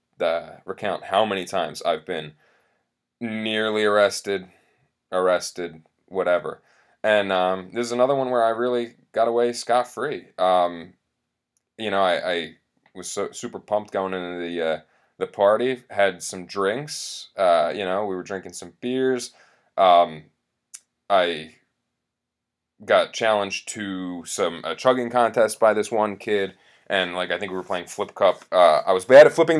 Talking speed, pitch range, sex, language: 155 wpm, 90-120 Hz, male, English